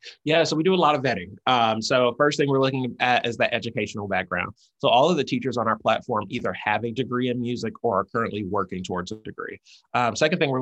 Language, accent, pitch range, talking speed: English, American, 110-130 Hz, 250 wpm